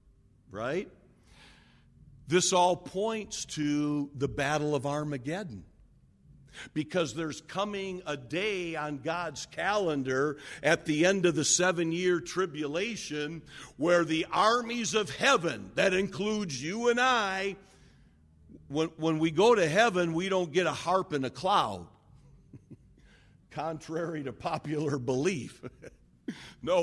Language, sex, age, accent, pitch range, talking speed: English, male, 50-69, American, 160-210 Hz, 120 wpm